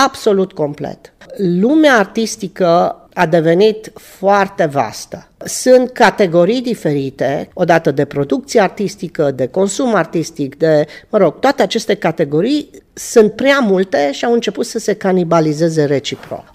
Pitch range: 150-210 Hz